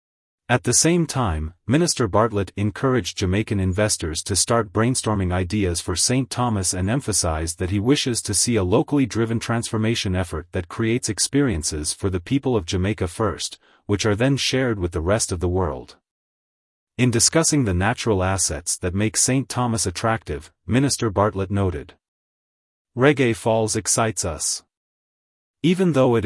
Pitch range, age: 90-120 Hz, 30-49